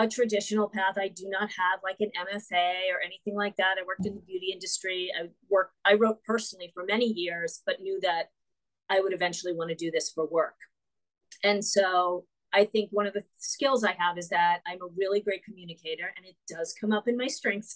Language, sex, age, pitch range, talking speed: English, female, 40-59, 180-225 Hz, 220 wpm